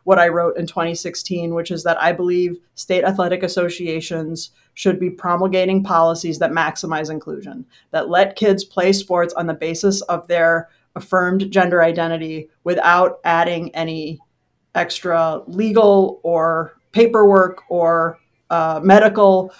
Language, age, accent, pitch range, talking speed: English, 30-49, American, 170-195 Hz, 130 wpm